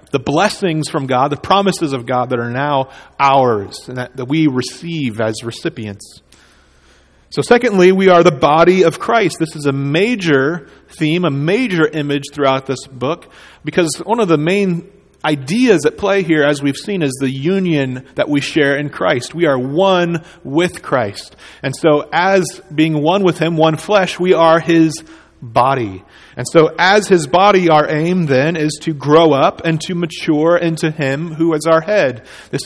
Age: 40-59